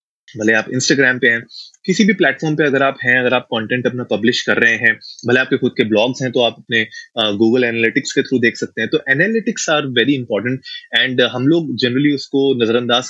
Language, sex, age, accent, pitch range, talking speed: Hindi, male, 20-39, native, 115-140 Hz, 215 wpm